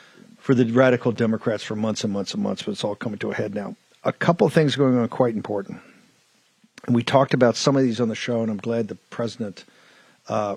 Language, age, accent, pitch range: English, 50-69, American, 115-140 Hz